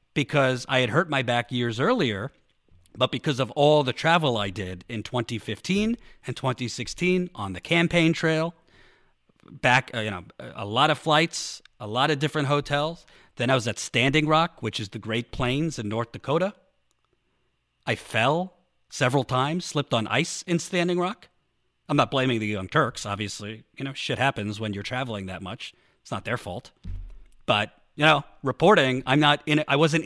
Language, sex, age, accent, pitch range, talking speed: English, male, 40-59, American, 120-155 Hz, 180 wpm